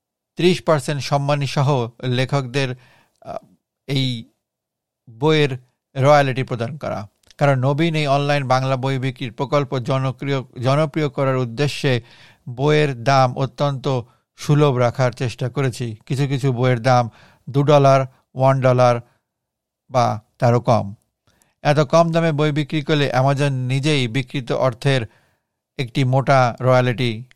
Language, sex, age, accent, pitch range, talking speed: Bengali, male, 60-79, native, 125-145 Hz, 110 wpm